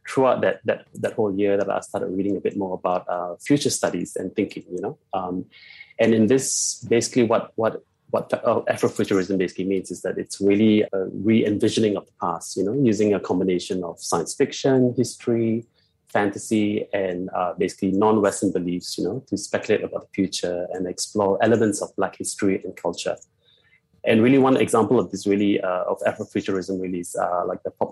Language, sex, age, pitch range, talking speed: English, male, 20-39, 95-115 Hz, 185 wpm